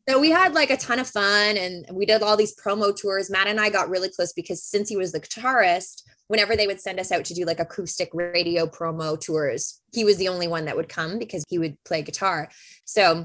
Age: 20-39